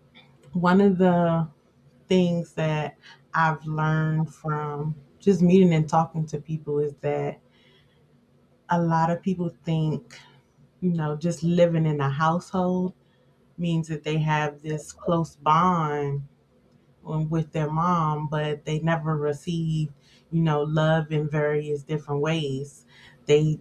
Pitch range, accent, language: 145-170 Hz, American, English